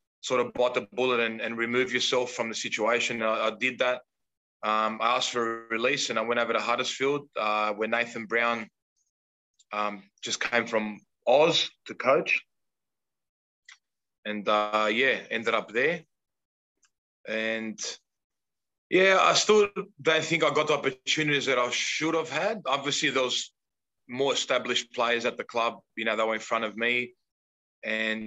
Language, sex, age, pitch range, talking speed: English, male, 20-39, 110-145 Hz, 165 wpm